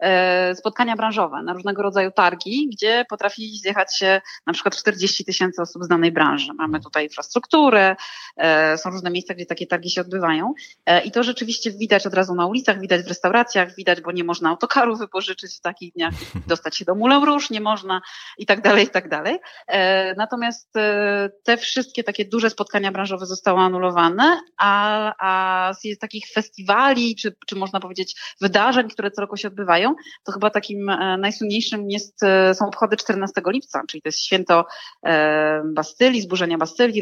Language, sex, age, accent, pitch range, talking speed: Polish, female, 30-49, native, 170-210 Hz, 160 wpm